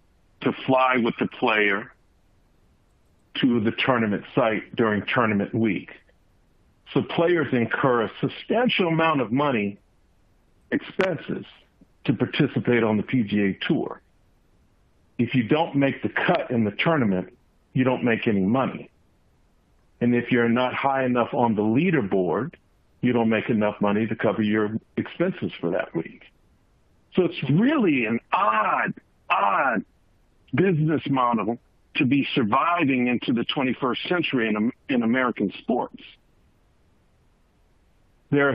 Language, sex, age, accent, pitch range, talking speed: English, male, 50-69, American, 100-125 Hz, 130 wpm